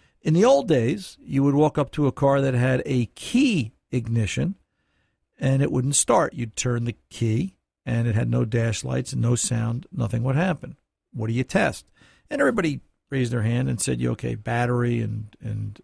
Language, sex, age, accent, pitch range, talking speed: English, male, 60-79, American, 115-160 Hz, 190 wpm